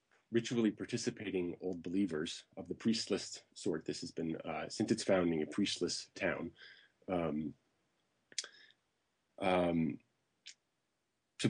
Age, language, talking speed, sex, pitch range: 30-49, English, 110 wpm, male, 85-100 Hz